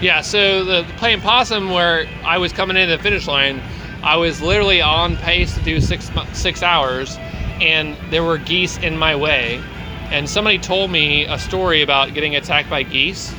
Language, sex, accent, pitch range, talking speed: English, male, American, 135-170 Hz, 185 wpm